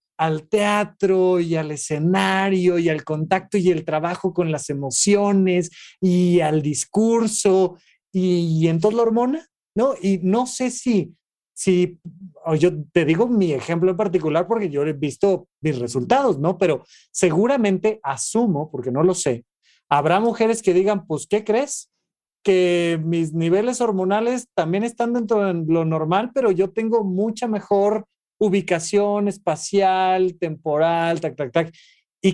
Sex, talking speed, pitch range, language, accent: male, 145 wpm, 155-200 Hz, Spanish, Mexican